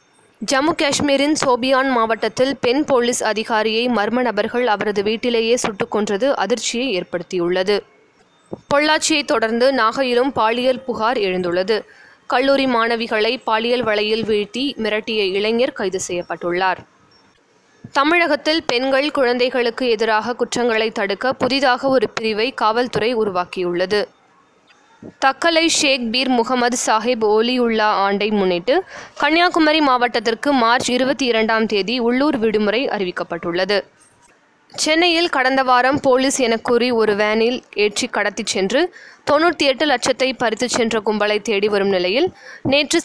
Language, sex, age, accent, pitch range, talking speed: Tamil, female, 20-39, native, 215-265 Hz, 110 wpm